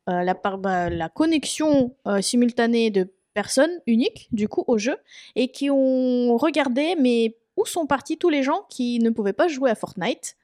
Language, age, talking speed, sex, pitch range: French, 20-39, 190 wpm, female, 210-275 Hz